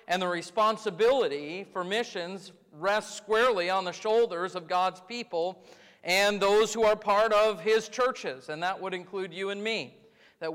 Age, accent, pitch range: 40-59, American, 170-215 Hz